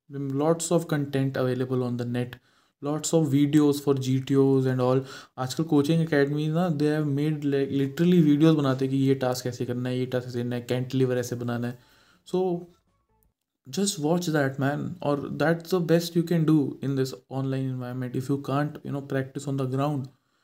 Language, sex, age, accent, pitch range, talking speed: Hindi, male, 20-39, native, 130-150 Hz, 180 wpm